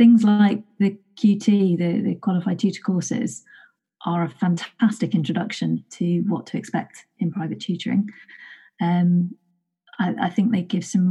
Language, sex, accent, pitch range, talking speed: English, female, British, 175-210 Hz, 145 wpm